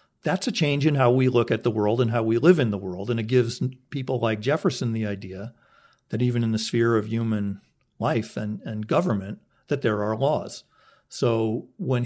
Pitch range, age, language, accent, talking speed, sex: 110-135 Hz, 50-69, English, American, 210 wpm, male